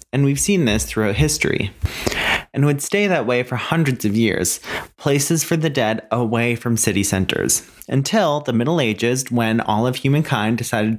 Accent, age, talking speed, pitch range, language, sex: American, 30-49, 175 wpm, 115-150 Hz, English, male